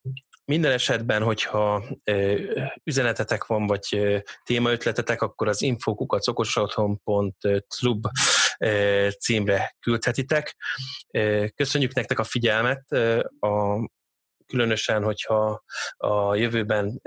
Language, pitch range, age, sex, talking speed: Hungarian, 105-120 Hz, 20-39, male, 75 wpm